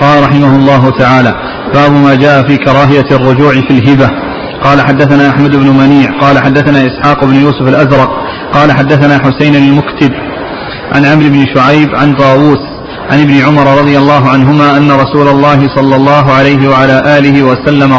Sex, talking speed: male, 160 wpm